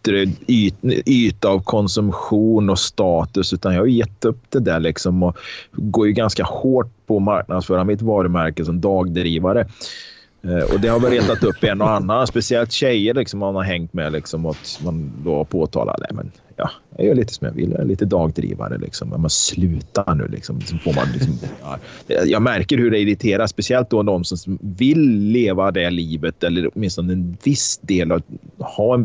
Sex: male